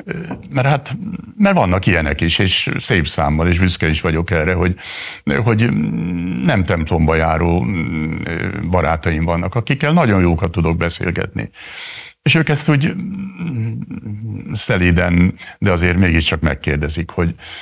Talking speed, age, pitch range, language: 125 wpm, 60-79, 80-110 Hz, Hungarian